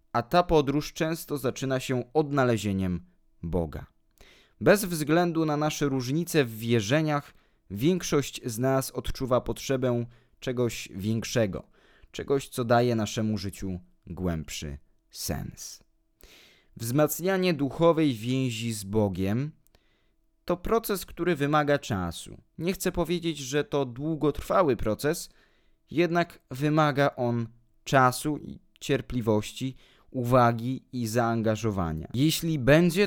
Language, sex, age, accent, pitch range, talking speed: Polish, male, 20-39, native, 110-150 Hz, 105 wpm